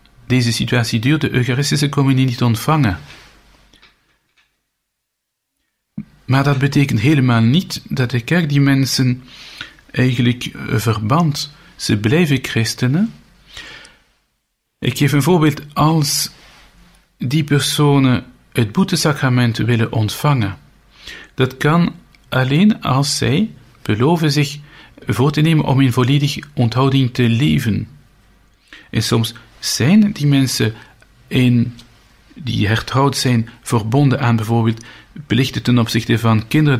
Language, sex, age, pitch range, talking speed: Dutch, male, 50-69, 115-145 Hz, 110 wpm